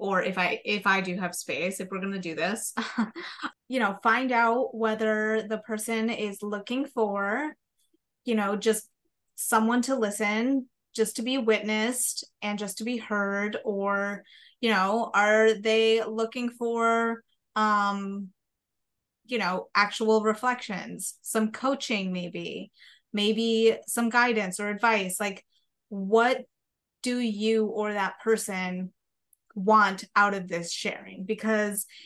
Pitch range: 200-235 Hz